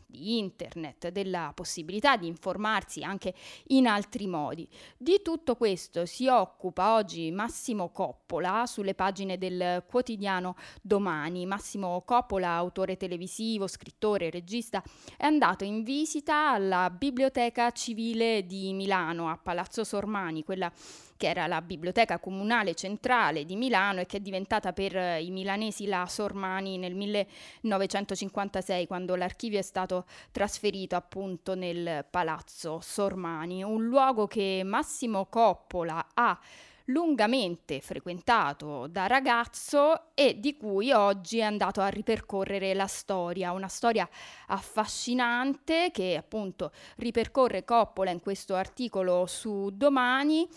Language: Italian